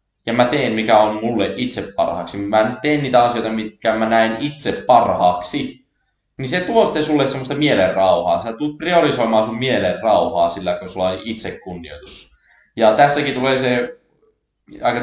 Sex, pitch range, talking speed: male, 100-140 Hz, 150 wpm